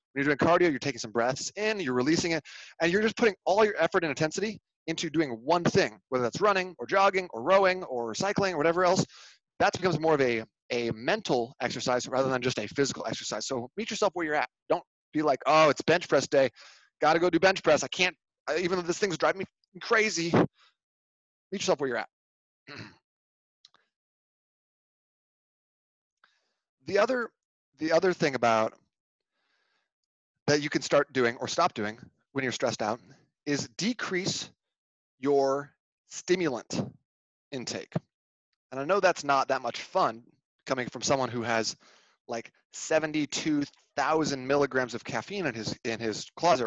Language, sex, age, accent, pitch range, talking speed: English, male, 30-49, American, 125-175 Hz, 170 wpm